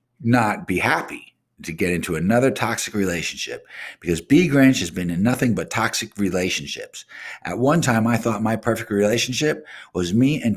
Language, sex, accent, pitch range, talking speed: English, male, American, 95-125 Hz, 170 wpm